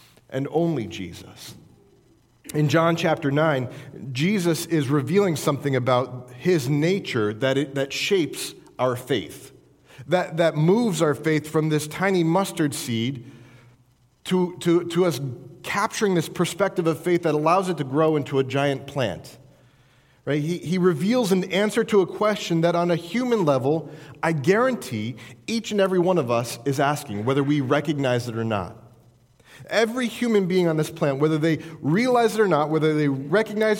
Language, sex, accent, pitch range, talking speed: English, male, American, 140-185 Hz, 165 wpm